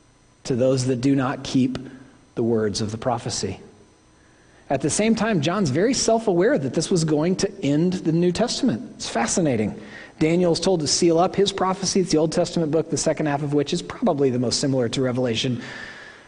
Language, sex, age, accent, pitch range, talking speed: English, male, 40-59, American, 120-155 Hz, 195 wpm